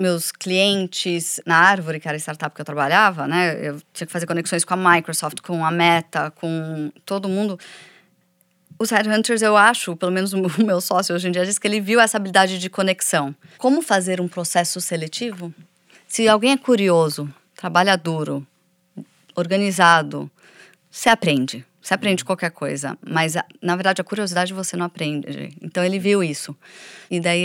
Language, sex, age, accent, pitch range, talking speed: Portuguese, female, 20-39, Brazilian, 160-190 Hz, 170 wpm